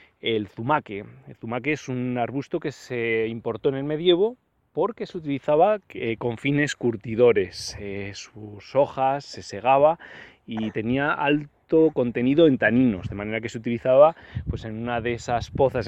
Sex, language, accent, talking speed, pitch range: male, Spanish, Spanish, 155 wpm, 120-155 Hz